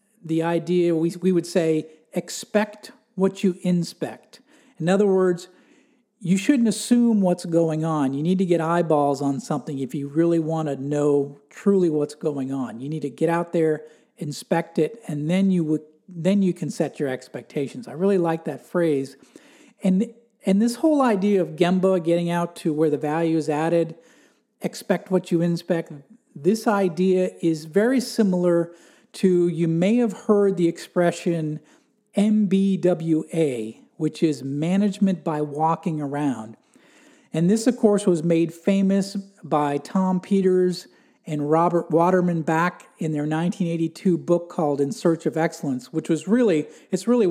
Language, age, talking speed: English, 50-69, 160 wpm